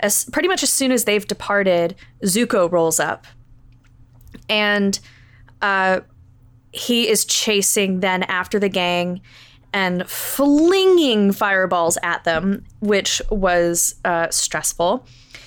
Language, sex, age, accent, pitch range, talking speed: English, female, 20-39, American, 130-220 Hz, 115 wpm